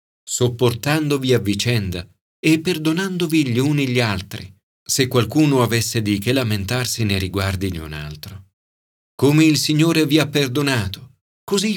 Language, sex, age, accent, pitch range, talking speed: Italian, male, 40-59, native, 100-155 Hz, 140 wpm